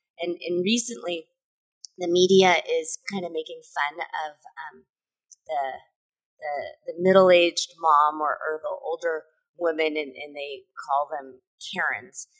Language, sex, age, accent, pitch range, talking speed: English, female, 20-39, American, 175-285 Hz, 140 wpm